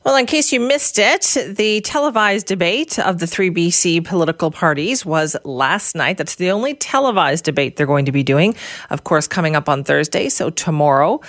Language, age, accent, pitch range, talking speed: English, 40-59, American, 150-205 Hz, 190 wpm